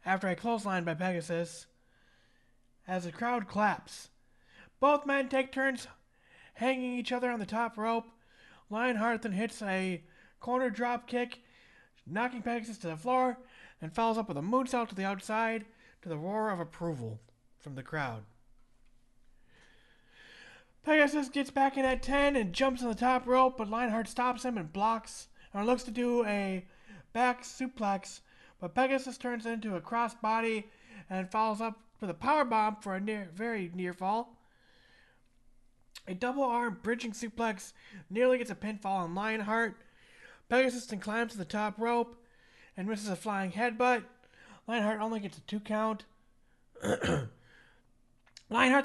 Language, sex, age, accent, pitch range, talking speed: English, male, 30-49, American, 195-250 Hz, 150 wpm